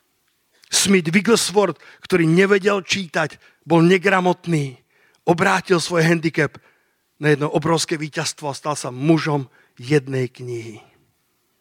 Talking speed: 105 wpm